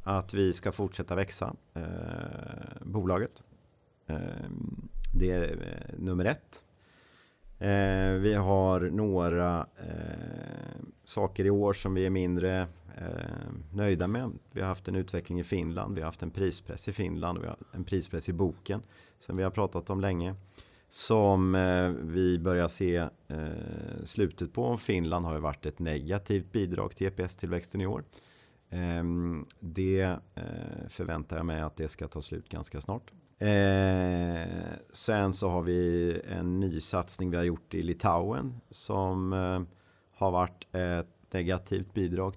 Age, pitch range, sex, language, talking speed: 30-49, 90-100 Hz, male, Swedish, 145 wpm